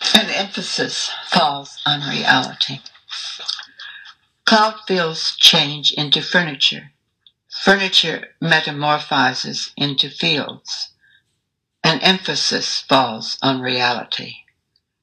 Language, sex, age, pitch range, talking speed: English, female, 60-79, 135-175 Hz, 75 wpm